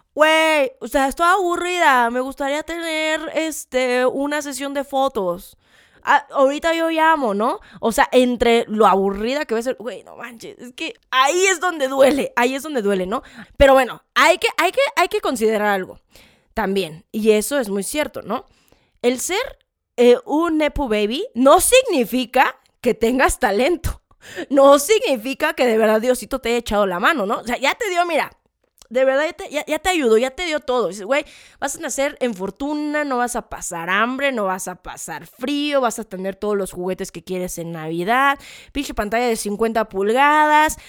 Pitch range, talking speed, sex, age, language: 220-295 Hz, 190 wpm, female, 20-39, Spanish